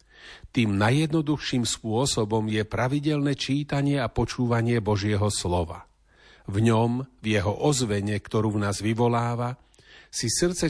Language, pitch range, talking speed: Slovak, 105-135 Hz, 120 wpm